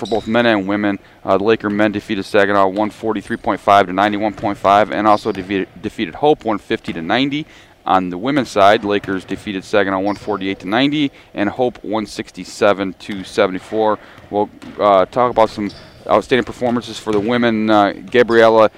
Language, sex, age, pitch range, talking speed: English, male, 30-49, 100-115 Hz, 155 wpm